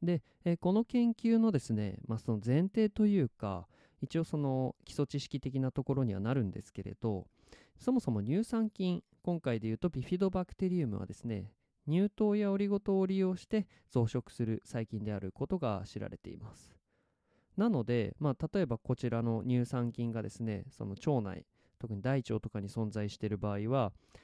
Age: 20-39